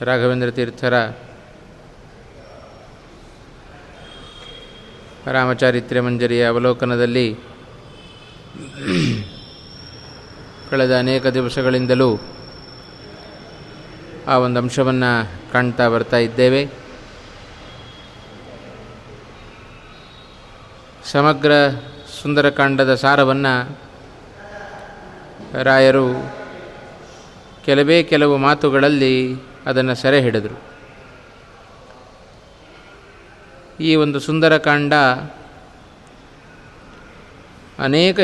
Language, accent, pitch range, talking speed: Kannada, native, 125-150 Hz, 40 wpm